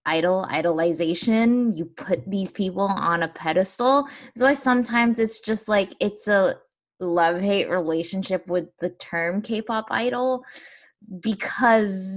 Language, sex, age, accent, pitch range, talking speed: English, female, 10-29, American, 175-225 Hz, 125 wpm